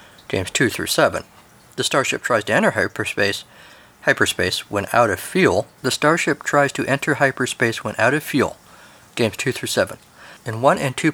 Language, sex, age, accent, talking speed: English, male, 50-69, American, 180 wpm